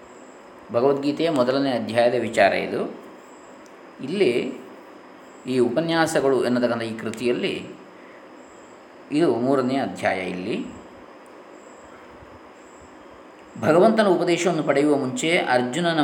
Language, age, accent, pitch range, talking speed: Kannada, 20-39, native, 125-155 Hz, 75 wpm